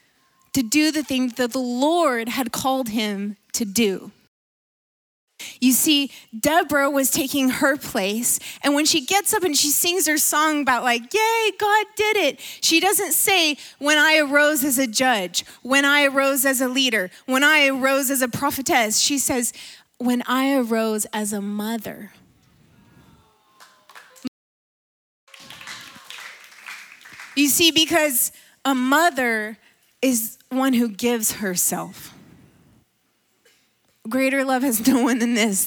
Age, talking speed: 30-49, 135 wpm